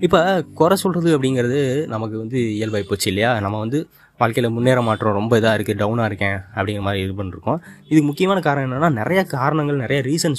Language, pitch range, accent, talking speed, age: Tamil, 105-145 Hz, native, 180 wpm, 20-39